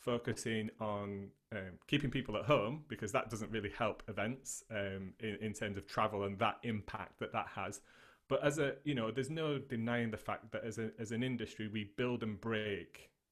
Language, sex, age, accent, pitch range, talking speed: English, male, 30-49, British, 105-130 Hz, 205 wpm